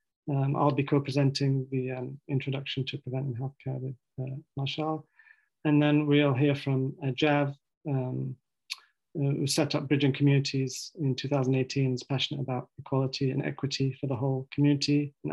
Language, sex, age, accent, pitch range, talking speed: English, male, 30-49, British, 130-145 Hz, 155 wpm